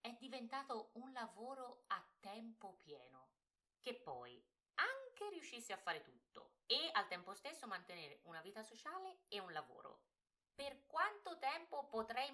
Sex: female